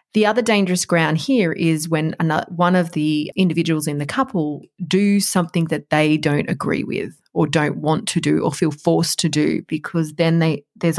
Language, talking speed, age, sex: English, 185 wpm, 30-49, female